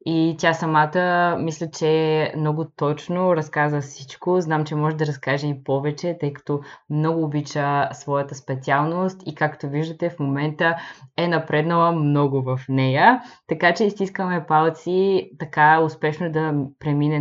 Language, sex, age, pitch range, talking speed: Bulgarian, female, 20-39, 150-180 Hz, 140 wpm